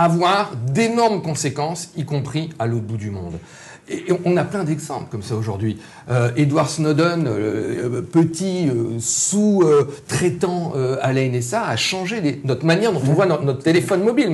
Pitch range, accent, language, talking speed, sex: 125-175 Hz, French, French, 175 wpm, male